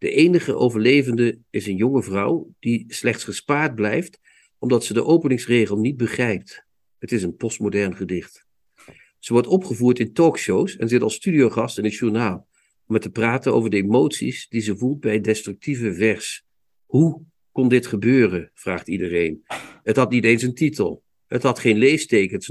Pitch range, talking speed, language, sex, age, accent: 105-125 Hz, 165 wpm, Dutch, male, 50-69, Dutch